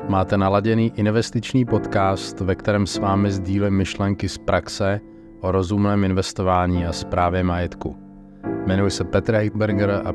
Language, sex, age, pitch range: Czech, male, 30-49, 95-115 Hz